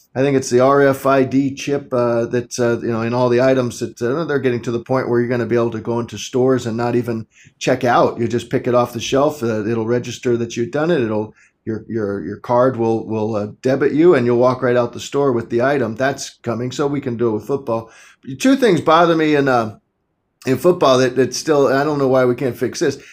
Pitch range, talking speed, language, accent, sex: 120-155 Hz, 255 wpm, English, American, male